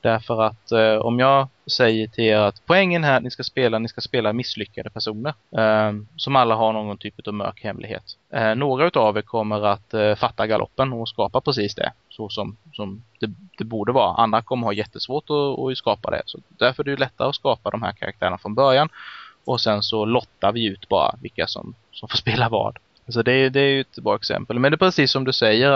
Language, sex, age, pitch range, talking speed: Swedish, male, 20-39, 105-135 Hz, 235 wpm